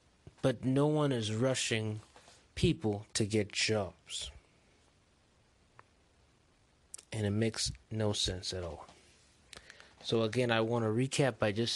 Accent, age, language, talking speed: American, 20-39, English, 120 wpm